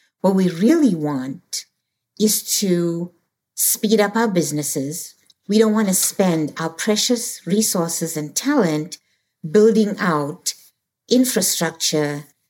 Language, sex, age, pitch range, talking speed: English, female, 60-79, 155-195 Hz, 110 wpm